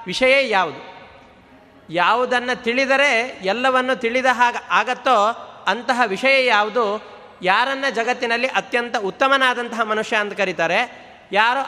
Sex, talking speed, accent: male, 100 wpm, native